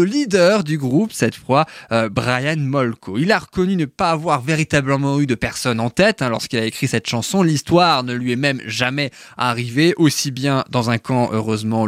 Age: 20-39